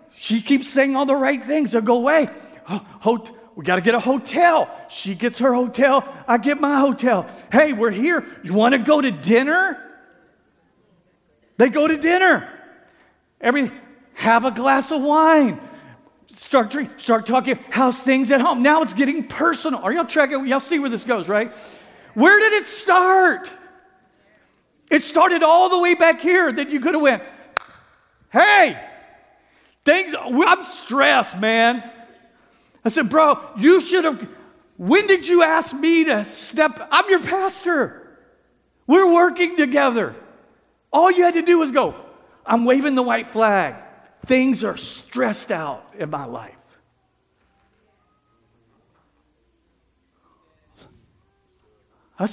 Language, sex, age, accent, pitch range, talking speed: English, male, 50-69, American, 240-330 Hz, 145 wpm